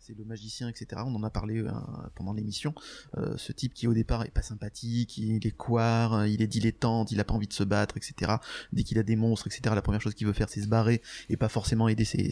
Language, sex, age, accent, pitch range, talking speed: French, male, 20-39, French, 110-130 Hz, 270 wpm